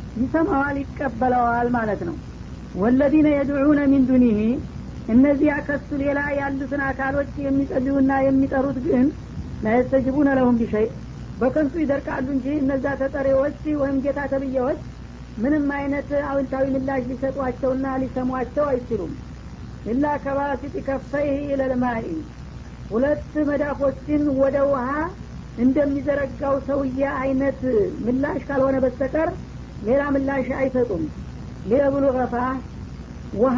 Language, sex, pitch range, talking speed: Amharic, female, 260-280 Hz, 110 wpm